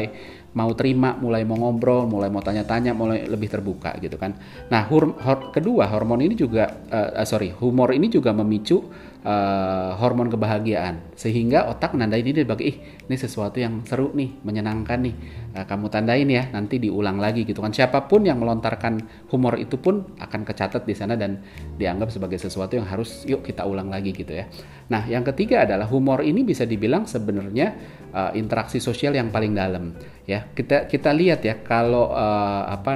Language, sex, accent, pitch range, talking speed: Indonesian, male, native, 105-130 Hz, 175 wpm